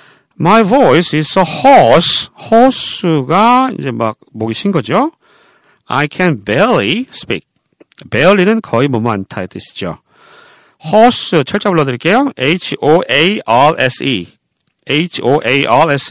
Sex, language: male, Korean